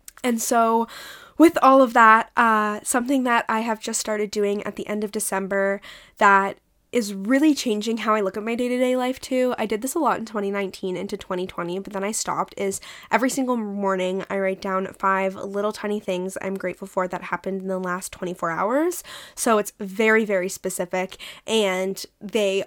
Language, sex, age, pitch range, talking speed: English, female, 10-29, 190-235 Hz, 190 wpm